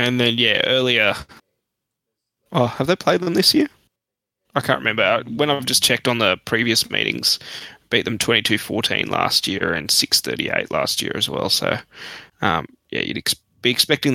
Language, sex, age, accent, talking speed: English, male, 20-39, Australian, 175 wpm